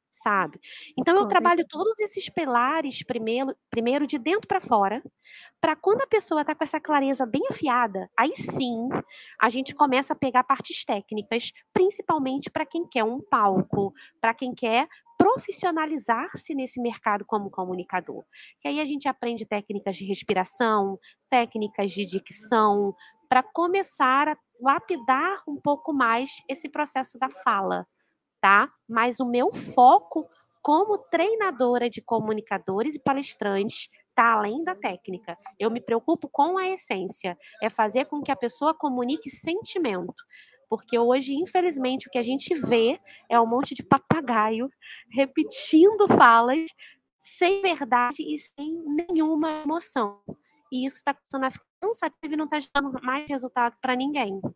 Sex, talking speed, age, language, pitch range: female, 145 wpm, 20-39, Portuguese, 230-315 Hz